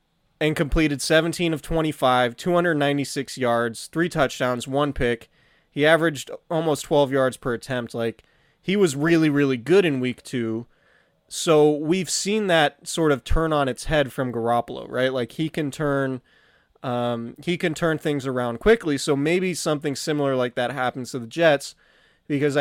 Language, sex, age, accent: English, male, 20-39, American